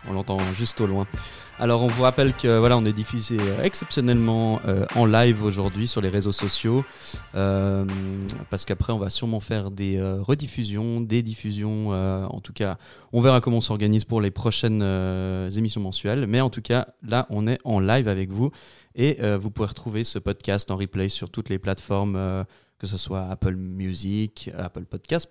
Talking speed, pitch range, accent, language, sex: 195 wpm, 95-120 Hz, French, French, male